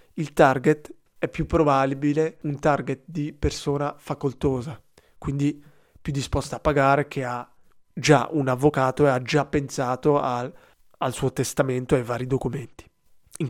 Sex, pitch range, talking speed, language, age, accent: male, 130-165 Hz, 145 wpm, Italian, 20-39, native